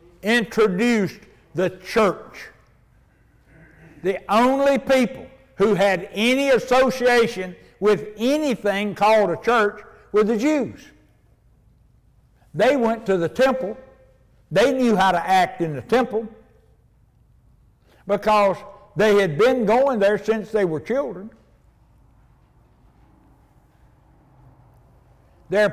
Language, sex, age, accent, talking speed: English, male, 60-79, American, 100 wpm